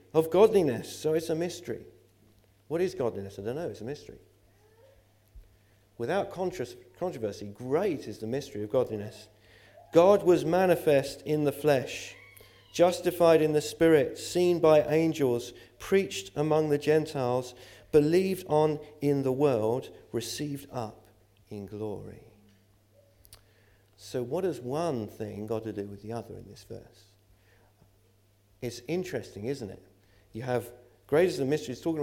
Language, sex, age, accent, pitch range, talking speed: English, male, 50-69, British, 105-145 Hz, 140 wpm